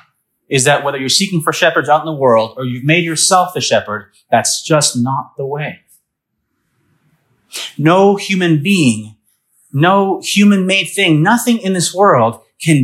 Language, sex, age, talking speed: English, male, 30-49, 160 wpm